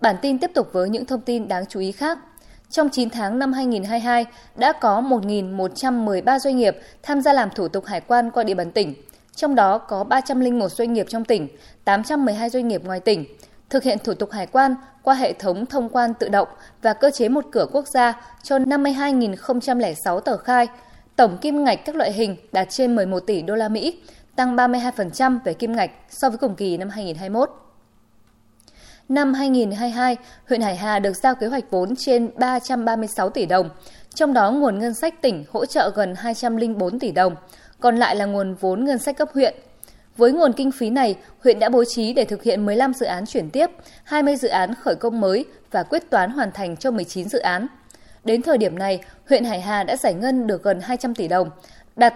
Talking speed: 205 wpm